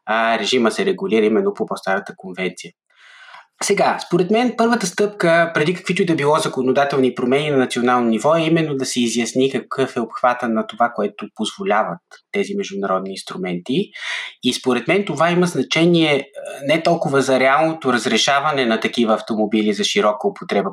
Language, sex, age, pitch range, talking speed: Bulgarian, male, 20-39, 115-165 Hz, 160 wpm